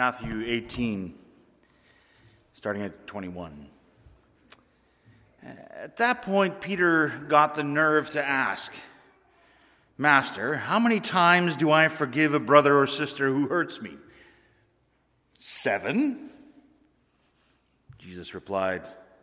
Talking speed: 95 wpm